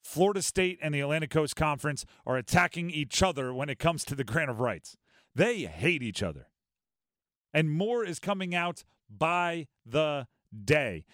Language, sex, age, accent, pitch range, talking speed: English, male, 40-59, American, 130-175 Hz, 165 wpm